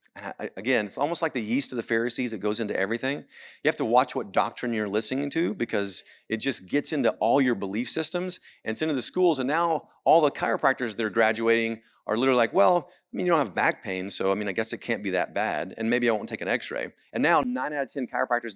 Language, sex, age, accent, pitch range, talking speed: English, male, 40-59, American, 115-165 Hz, 255 wpm